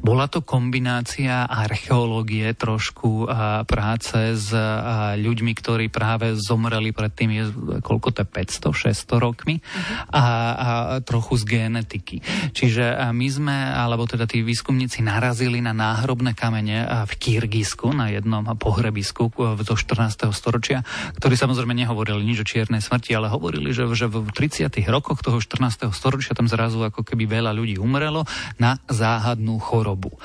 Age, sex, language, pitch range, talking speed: 30-49, male, Slovak, 110-125 Hz, 135 wpm